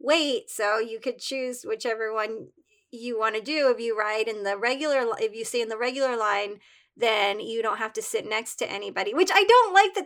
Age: 20-39